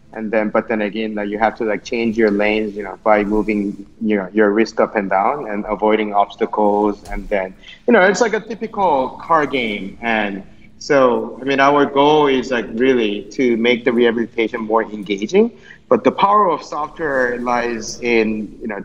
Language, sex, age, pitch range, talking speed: English, male, 30-49, 110-130 Hz, 195 wpm